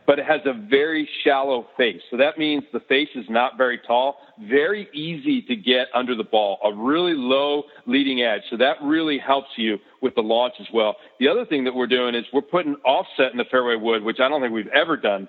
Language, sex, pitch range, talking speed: English, male, 125-155 Hz, 230 wpm